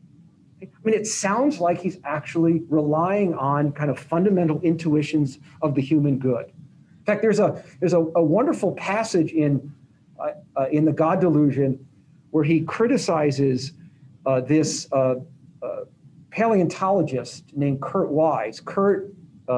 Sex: male